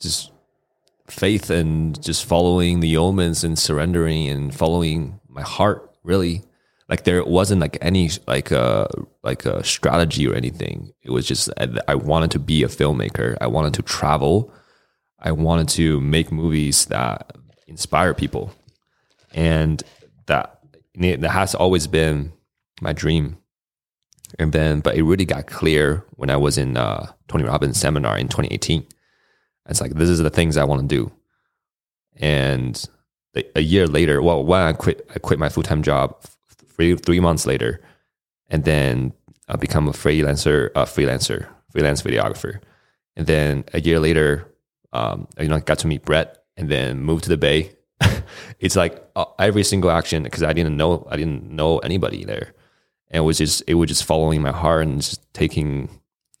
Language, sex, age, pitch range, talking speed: English, male, 20-39, 75-85 Hz, 165 wpm